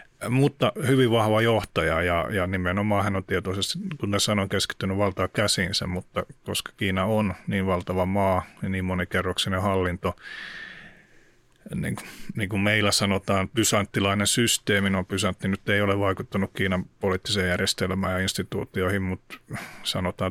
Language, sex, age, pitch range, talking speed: Finnish, male, 30-49, 95-105 Hz, 140 wpm